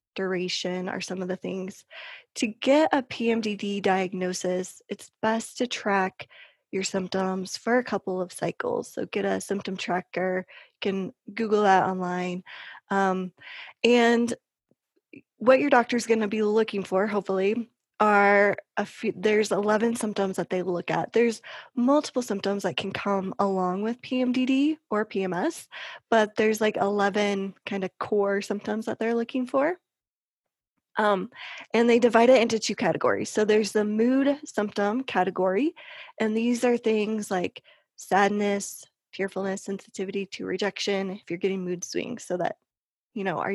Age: 20-39